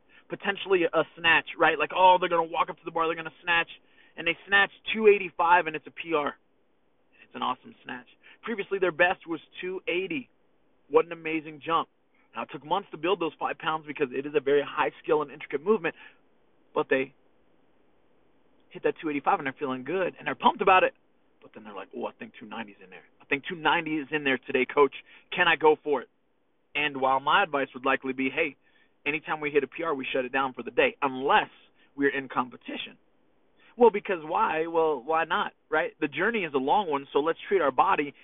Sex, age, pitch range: male, 30-49, 150-220 Hz